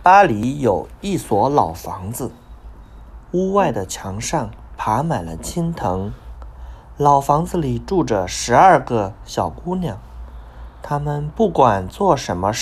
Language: Chinese